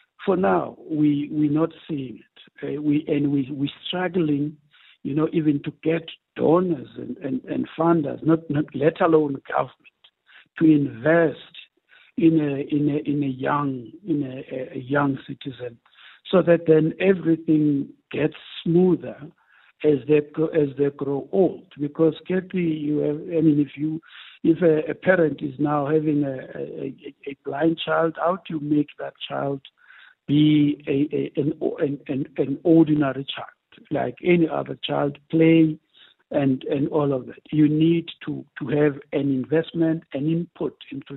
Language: English